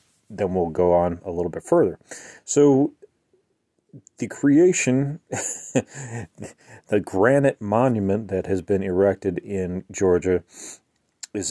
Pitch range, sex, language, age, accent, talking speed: 90-115 Hz, male, English, 30-49, American, 110 wpm